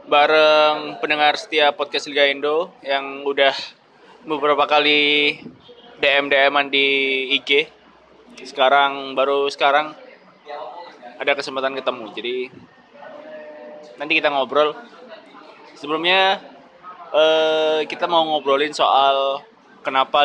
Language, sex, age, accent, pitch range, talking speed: Indonesian, male, 20-39, native, 135-155 Hz, 90 wpm